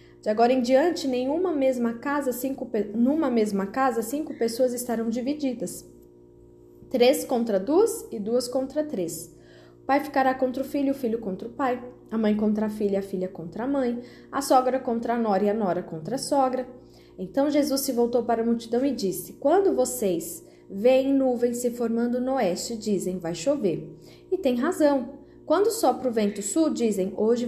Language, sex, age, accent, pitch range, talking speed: Portuguese, female, 20-39, Brazilian, 210-270 Hz, 185 wpm